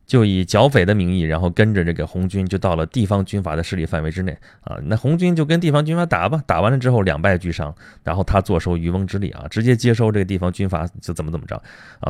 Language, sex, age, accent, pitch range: Chinese, male, 20-39, native, 90-125 Hz